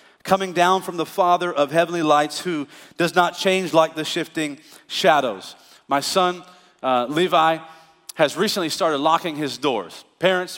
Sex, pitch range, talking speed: male, 135-175 Hz, 155 wpm